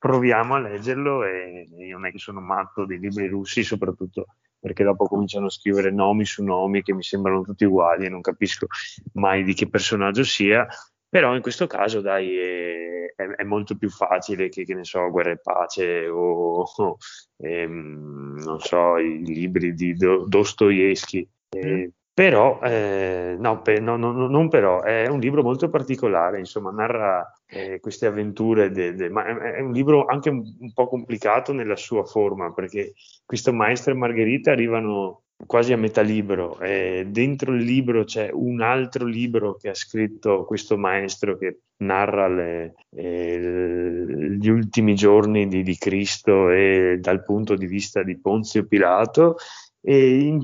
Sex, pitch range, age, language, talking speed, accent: male, 95-120 Hz, 20-39, Italian, 165 wpm, native